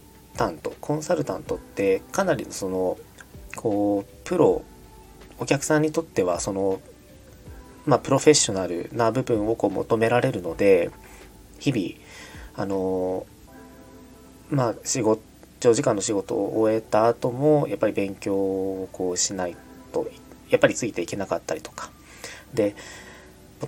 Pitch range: 95-150 Hz